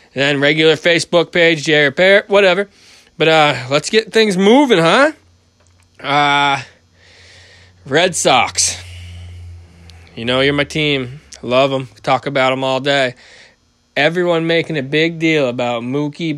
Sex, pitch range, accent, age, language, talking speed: male, 130-160 Hz, American, 20-39, English, 130 wpm